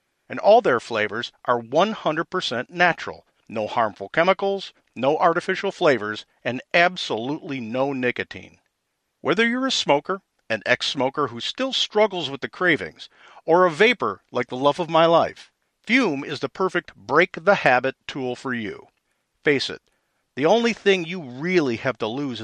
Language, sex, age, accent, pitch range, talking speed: English, male, 50-69, American, 130-195 Hz, 150 wpm